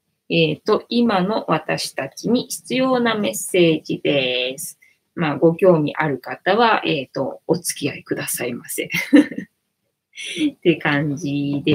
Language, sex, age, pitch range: Japanese, female, 20-39, 160-240 Hz